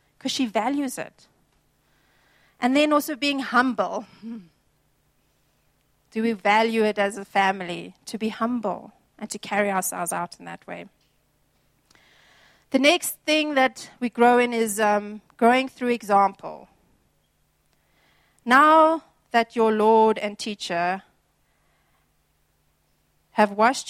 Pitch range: 195-245 Hz